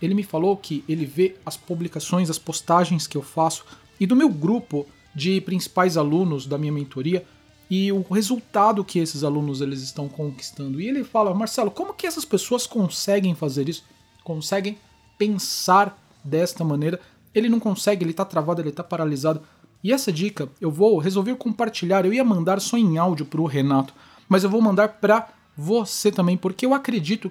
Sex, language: male, Portuguese